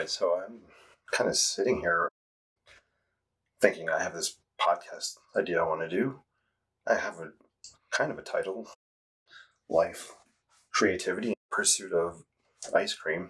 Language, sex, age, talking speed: English, male, 30-49, 130 wpm